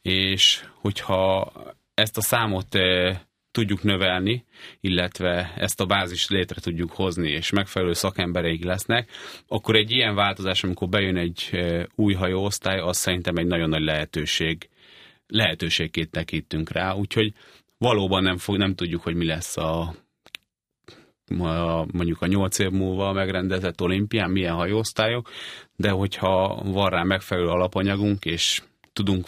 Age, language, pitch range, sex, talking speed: 30-49, Hungarian, 90-100 Hz, male, 135 wpm